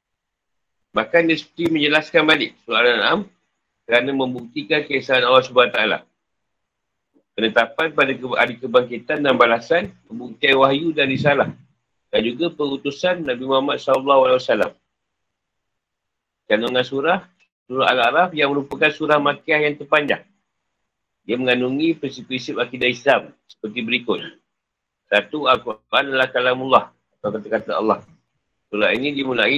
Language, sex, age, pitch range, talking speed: Malay, male, 50-69, 120-150 Hz, 110 wpm